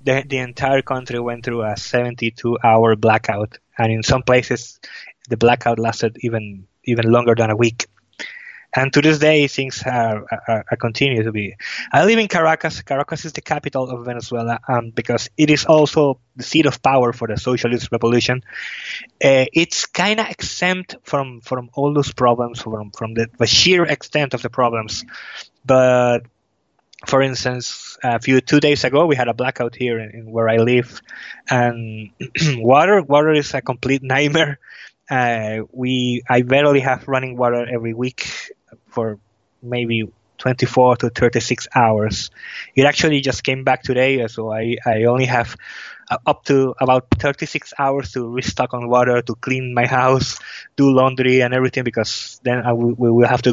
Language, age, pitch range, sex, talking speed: English, 20-39, 115-135 Hz, male, 170 wpm